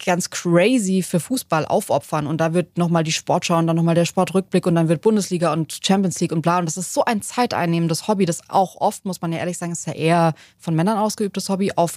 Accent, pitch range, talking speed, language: German, 165-215 Hz, 240 wpm, German